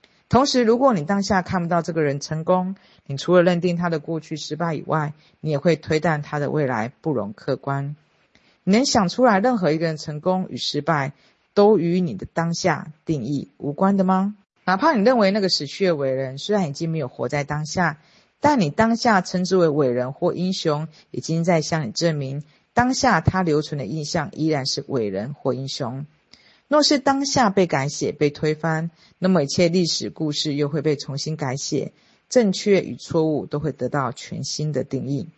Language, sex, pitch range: Chinese, female, 150-190 Hz